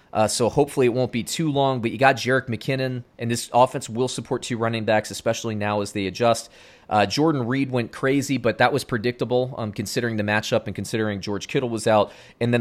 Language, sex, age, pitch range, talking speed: English, male, 30-49, 110-130 Hz, 225 wpm